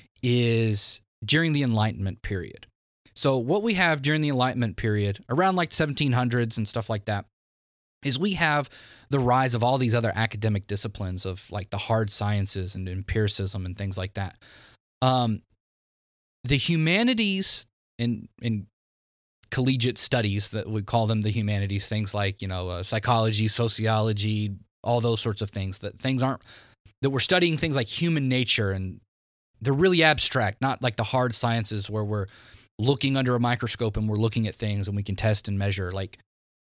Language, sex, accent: English, male, American